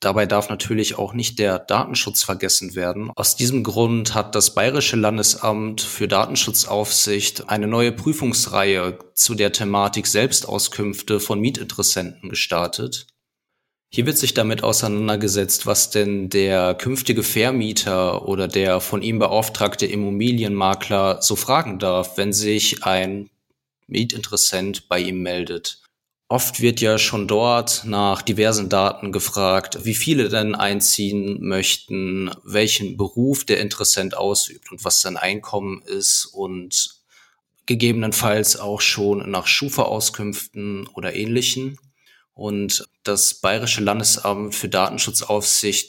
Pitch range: 100-110 Hz